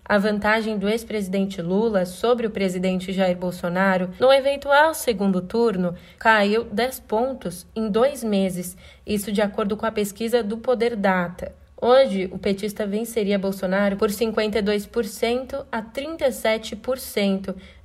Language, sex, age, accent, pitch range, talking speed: Portuguese, female, 20-39, Brazilian, 195-240 Hz, 130 wpm